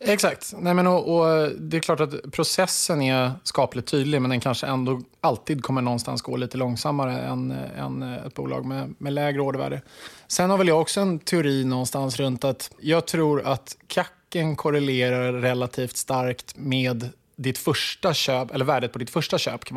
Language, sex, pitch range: Swedish, male, 125-155 Hz